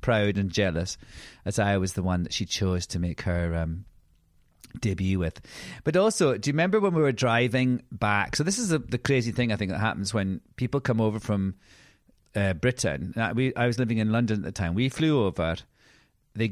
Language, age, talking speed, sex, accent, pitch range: English, 40-59, 205 wpm, male, British, 95-125 Hz